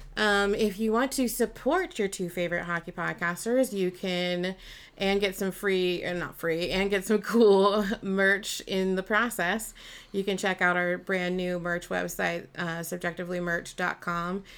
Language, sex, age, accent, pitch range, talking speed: English, female, 30-49, American, 175-200 Hz, 160 wpm